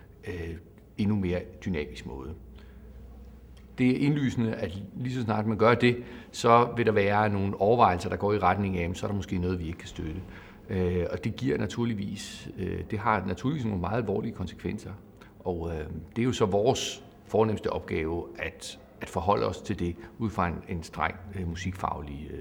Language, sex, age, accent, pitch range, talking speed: Danish, male, 60-79, native, 90-110 Hz, 170 wpm